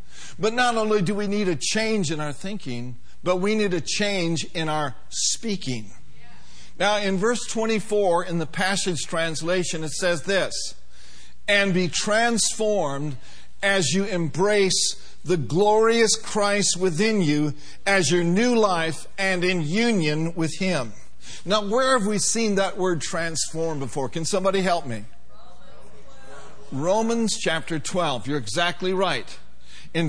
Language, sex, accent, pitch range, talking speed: English, male, American, 165-205 Hz, 140 wpm